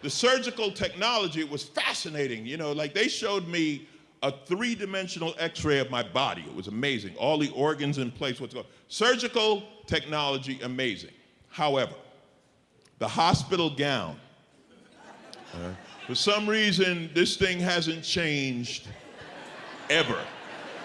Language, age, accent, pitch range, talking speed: English, 50-69, American, 150-200 Hz, 125 wpm